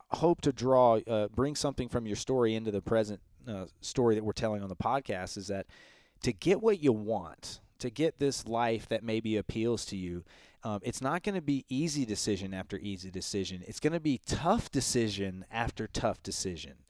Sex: male